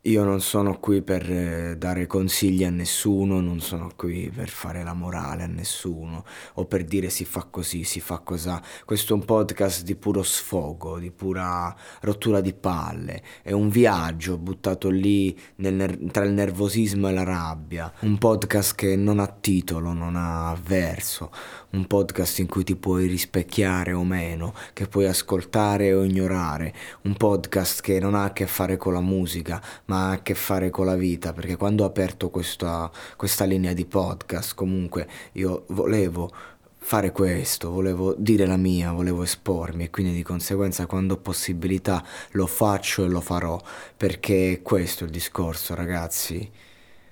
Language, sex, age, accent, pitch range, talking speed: Italian, male, 20-39, native, 85-100 Hz, 165 wpm